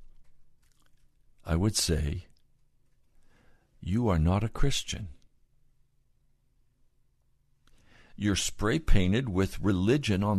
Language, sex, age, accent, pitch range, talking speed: English, male, 60-79, American, 95-145 Hz, 80 wpm